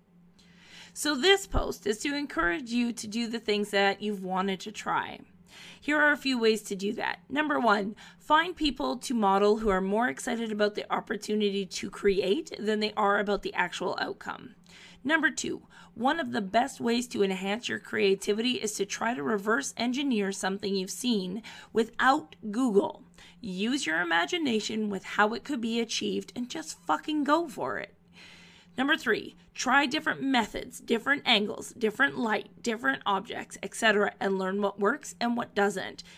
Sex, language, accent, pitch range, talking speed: female, English, American, 195-245 Hz, 170 wpm